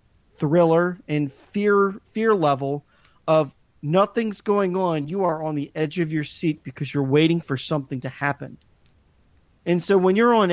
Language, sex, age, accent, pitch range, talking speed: English, male, 40-59, American, 145-185 Hz, 165 wpm